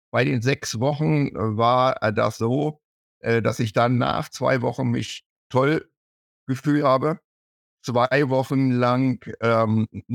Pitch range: 105-125 Hz